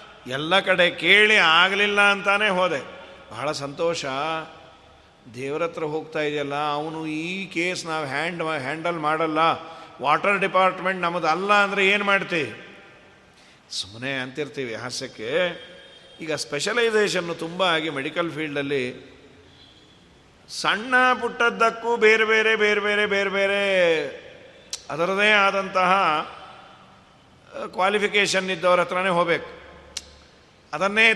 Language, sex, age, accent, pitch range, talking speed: Kannada, male, 50-69, native, 160-205 Hz, 90 wpm